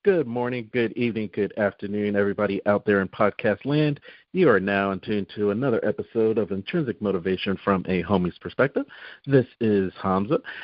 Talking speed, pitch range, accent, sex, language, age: 165 wpm, 105-175 Hz, American, male, English, 50-69